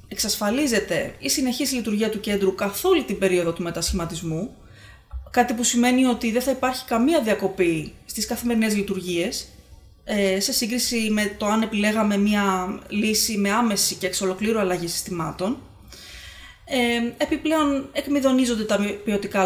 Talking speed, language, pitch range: 130 wpm, Greek, 190-250 Hz